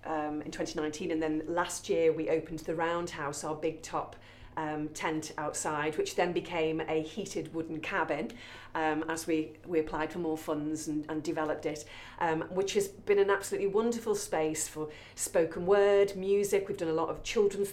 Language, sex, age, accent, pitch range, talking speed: English, female, 40-59, British, 165-210 Hz, 180 wpm